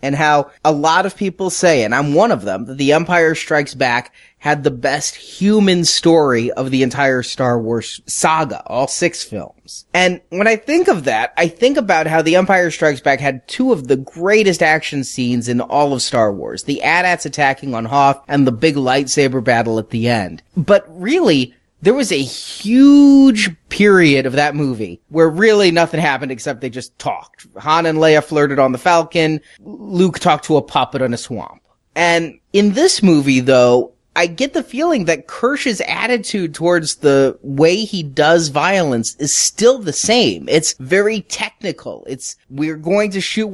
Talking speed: 185 wpm